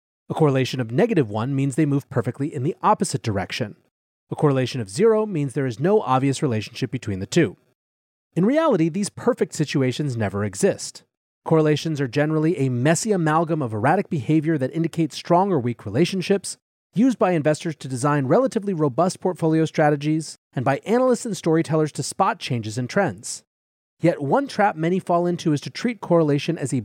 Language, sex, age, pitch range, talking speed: English, male, 30-49, 130-170 Hz, 175 wpm